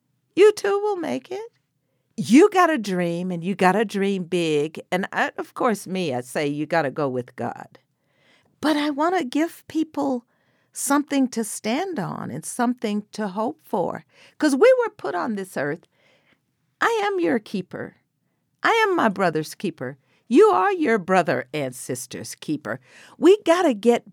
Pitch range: 170-270 Hz